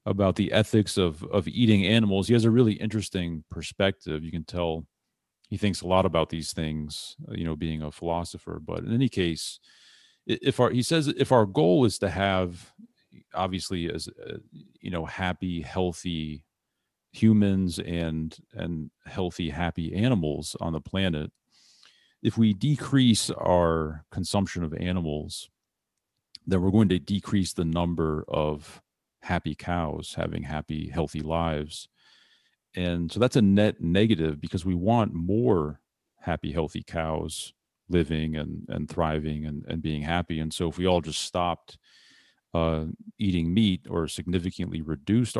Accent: American